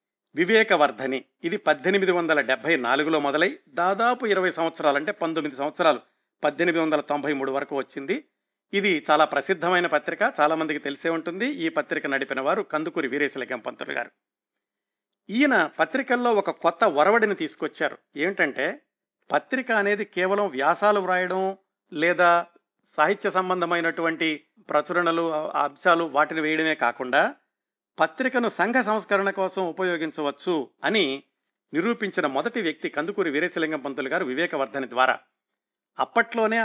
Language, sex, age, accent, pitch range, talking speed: Telugu, male, 50-69, native, 150-195 Hz, 115 wpm